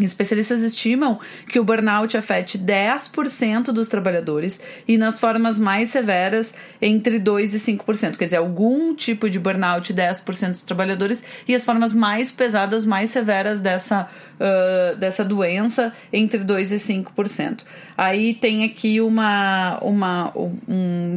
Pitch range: 195-225 Hz